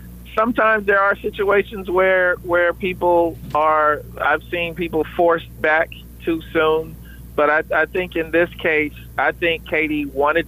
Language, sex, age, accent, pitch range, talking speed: English, male, 40-59, American, 140-170 Hz, 150 wpm